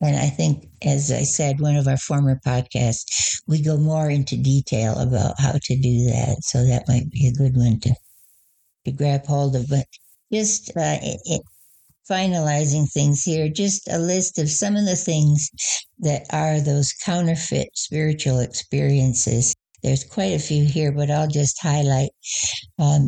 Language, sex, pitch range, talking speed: English, female, 130-155 Hz, 170 wpm